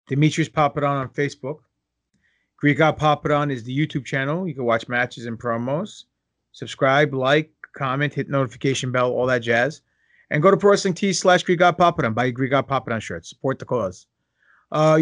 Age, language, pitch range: 30-49, English, 130-165 Hz